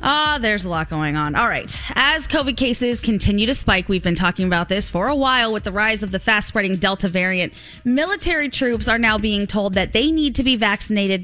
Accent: American